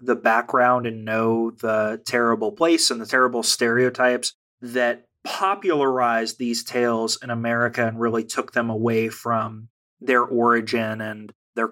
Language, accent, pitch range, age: English, American, 115-130 Hz, 30-49